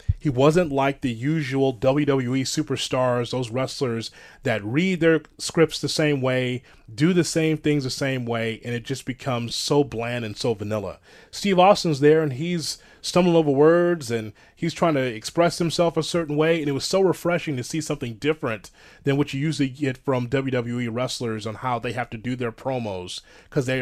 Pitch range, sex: 125-160 Hz, male